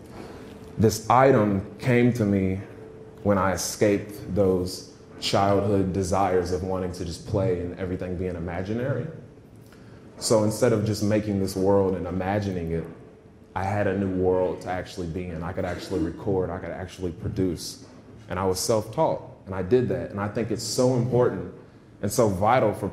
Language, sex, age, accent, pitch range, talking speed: English, male, 20-39, American, 95-115 Hz, 170 wpm